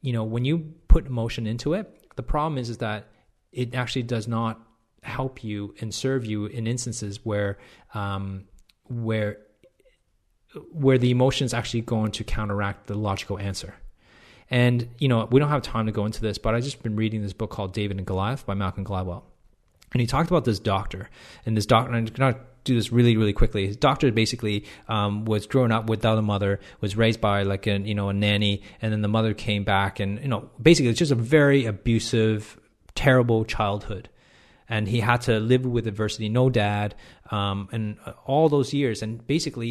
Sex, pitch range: male, 105-125 Hz